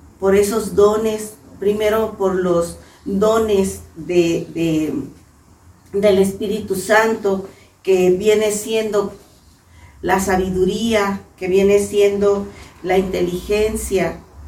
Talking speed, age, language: 85 wpm, 40-59, Spanish